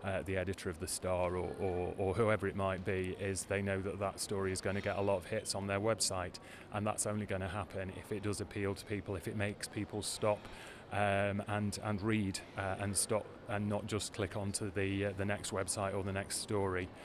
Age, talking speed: 30-49, 240 wpm